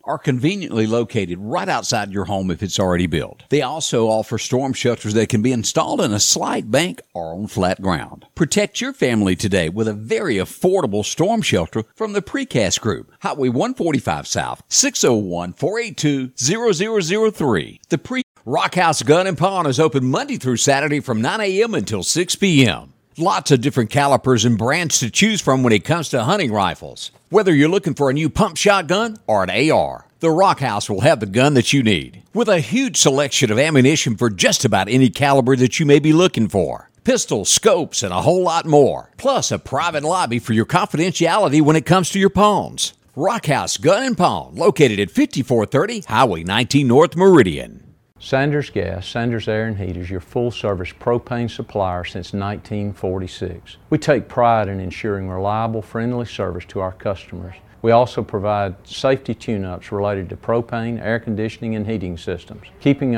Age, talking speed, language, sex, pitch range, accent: 60-79, 175 wpm, English, male, 105-150 Hz, American